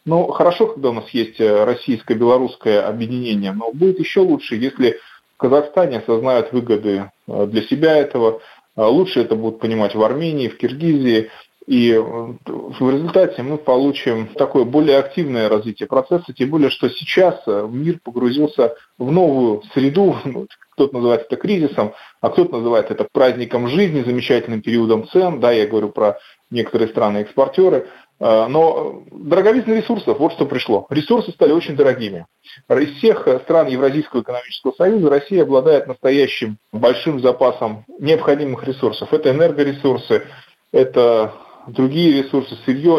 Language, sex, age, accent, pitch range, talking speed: Russian, male, 20-39, native, 120-165 Hz, 135 wpm